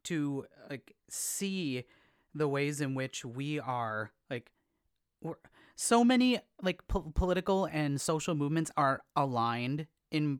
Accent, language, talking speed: American, English, 115 wpm